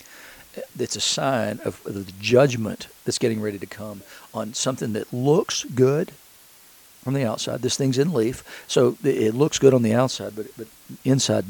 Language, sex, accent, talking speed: English, male, American, 170 wpm